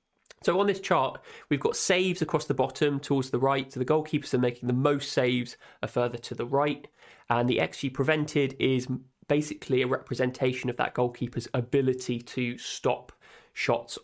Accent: British